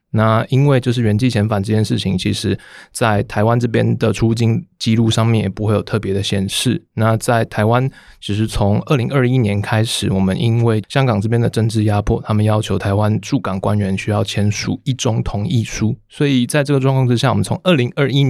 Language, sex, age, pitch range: Chinese, male, 20-39, 105-125 Hz